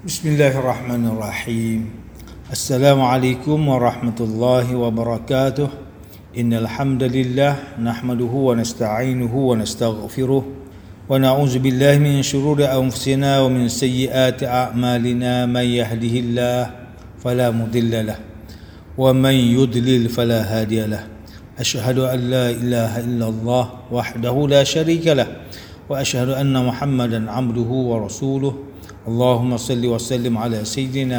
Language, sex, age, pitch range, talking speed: English, male, 50-69, 115-130 Hz, 100 wpm